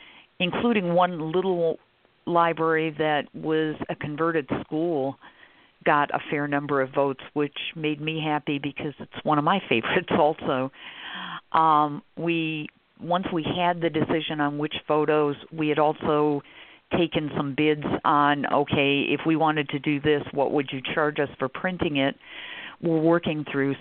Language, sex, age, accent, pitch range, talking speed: English, female, 50-69, American, 145-160 Hz, 155 wpm